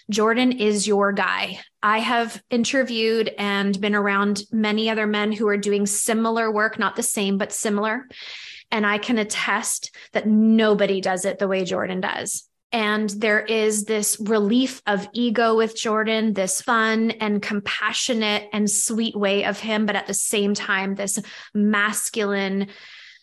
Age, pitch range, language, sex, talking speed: 20-39, 200-230 Hz, English, female, 155 wpm